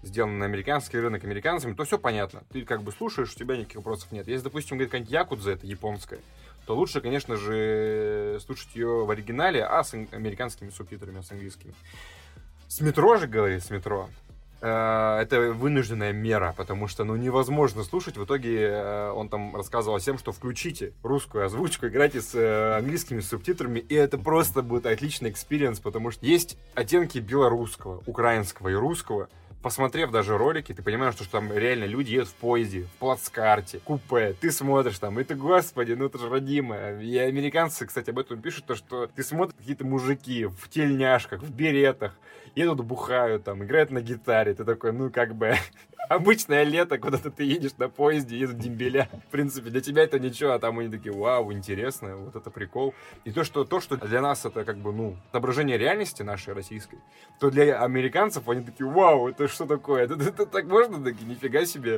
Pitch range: 105-140 Hz